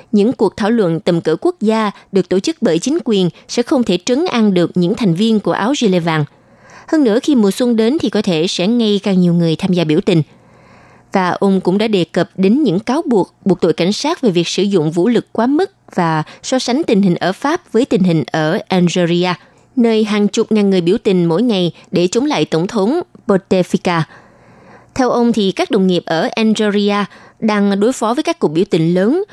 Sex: female